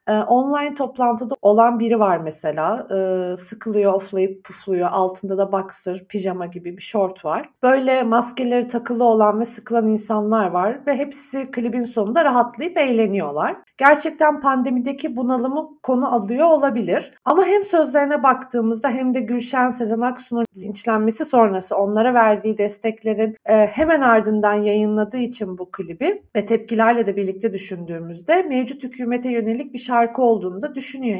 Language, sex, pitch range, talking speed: Turkish, female, 210-290 Hz, 140 wpm